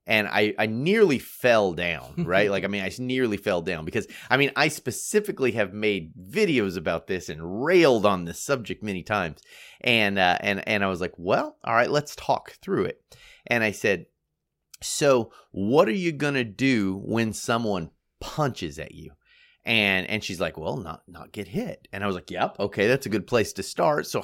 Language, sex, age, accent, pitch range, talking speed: English, male, 30-49, American, 105-165 Hz, 205 wpm